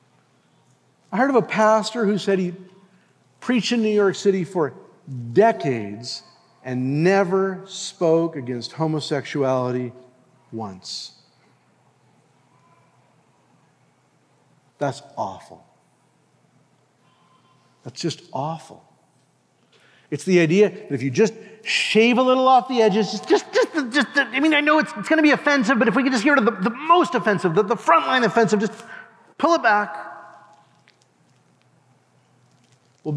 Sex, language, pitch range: male, English, 165-260 Hz